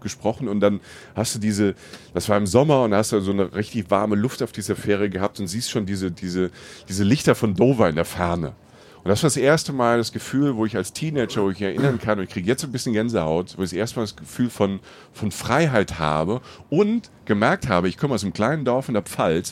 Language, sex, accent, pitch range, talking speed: German, male, German, 95-125 Hz, 245 wpm